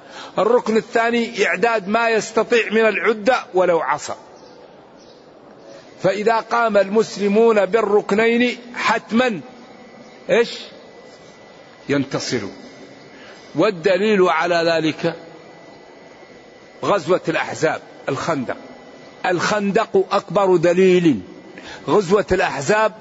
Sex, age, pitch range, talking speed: male, 50-69, 180-220 Hz, 70 wpm